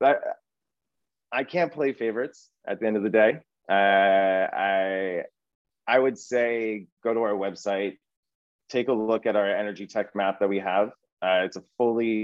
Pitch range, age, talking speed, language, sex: 95-110 Hz, 30-49, 165 wpm, English, male